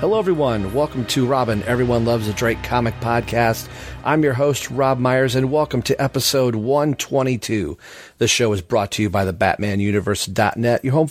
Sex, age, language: male, 40-59, English